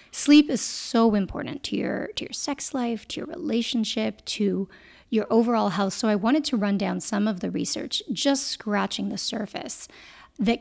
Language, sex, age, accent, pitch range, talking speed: English, female, 30-49, American, 205-250 Hz, 180 wpm